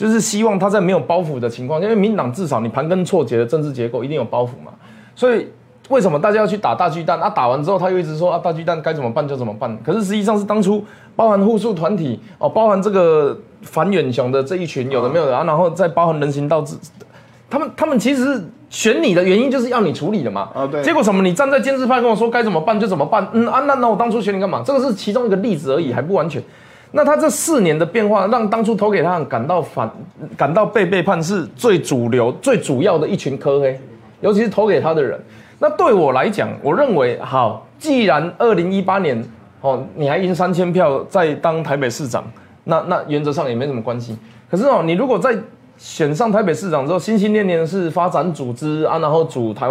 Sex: male